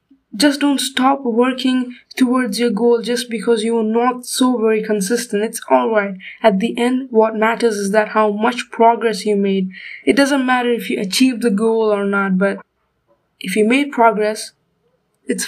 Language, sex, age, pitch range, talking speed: English, female, 20-39, 205-245 Hz, 170 wpm